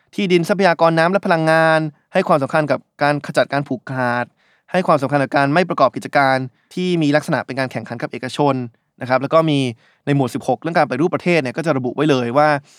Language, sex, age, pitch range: Thai, male, 20-39, 130-165 Hz